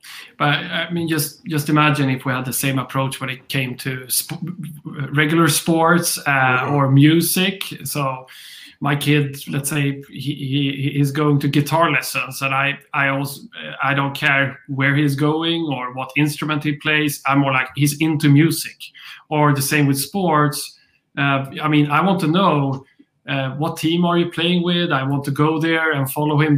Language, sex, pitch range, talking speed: English, male, 140-160 Hz, 185 wpm